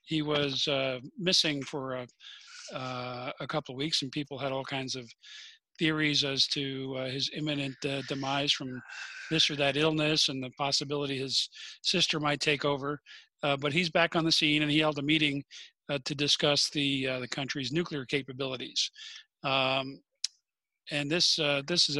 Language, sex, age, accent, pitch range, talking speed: English, male, 50-69, American, 135-155 Hz, 175 wpm